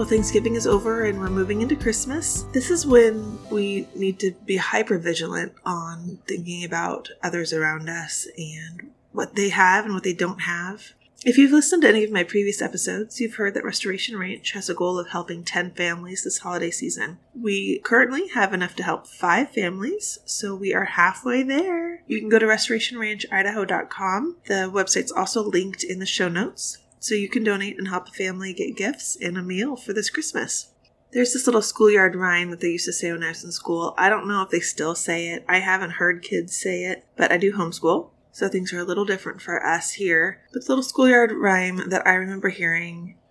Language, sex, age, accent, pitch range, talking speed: English, female, 20-39, American, 180-220 Hz, 205 wpm